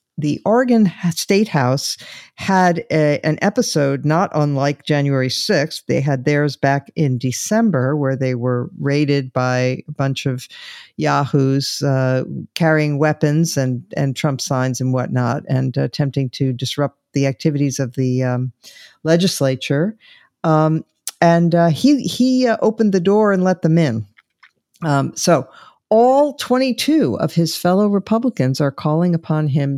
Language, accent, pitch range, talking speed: English, American, 140-180 Hz, 145 wpm